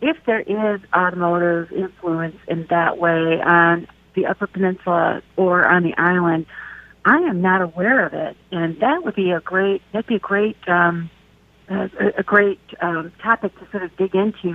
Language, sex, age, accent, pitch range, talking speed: English, female, 50-69, American, 175-210 Hz, 175 wpm